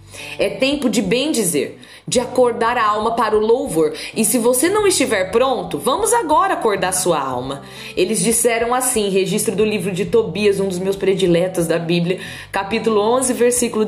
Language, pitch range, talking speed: Portuguese, 175-255 Hz, 175 wpm